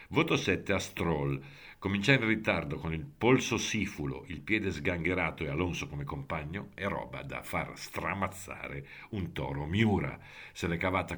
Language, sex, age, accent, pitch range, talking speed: Italian, male, 50-69, native, 75-100 Hz, 155 wpm